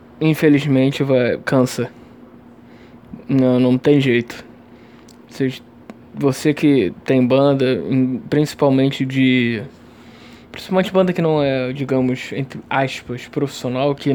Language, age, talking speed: Portuguese, 20-39, 105 wpm